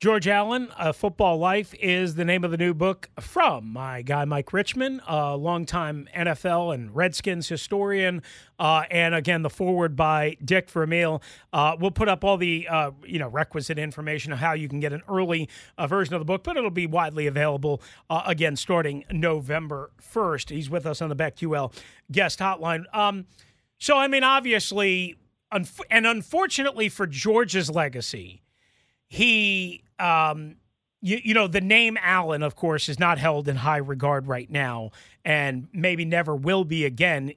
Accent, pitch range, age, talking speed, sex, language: American, 150-205 Hz, 40-59, 170 wpm, male, English